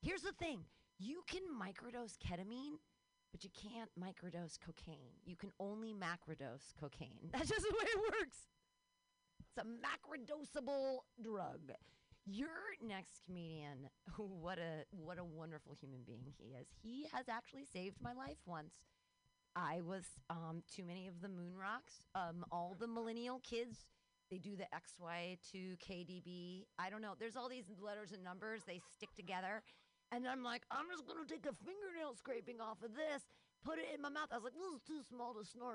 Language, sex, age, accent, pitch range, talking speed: English, female, 30-49, American, 185-310 Hz, 185 wpm